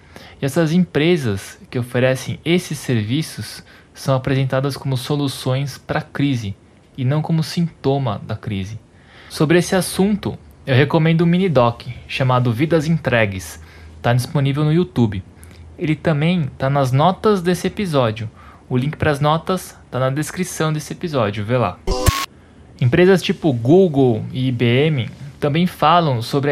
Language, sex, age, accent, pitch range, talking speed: Portuguese, male, 20-39, Brazilian, 120-150 Hz, 140 wpm